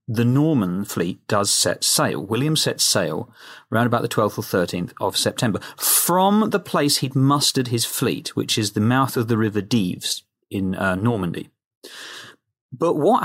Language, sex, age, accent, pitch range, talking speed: English, male, 40-59, British, 120-155 Hz, 170 wpm